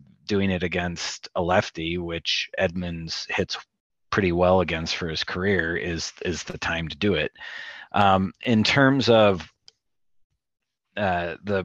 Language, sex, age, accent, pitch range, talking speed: English, male, 30-49, American, 90-105 Hz, 140 wpm